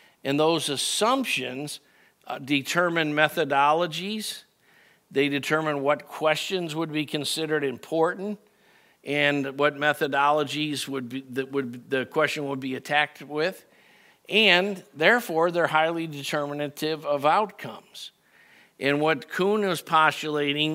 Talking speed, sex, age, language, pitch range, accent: 115 wpm, male, 50-69, English, 140-160 Hz, American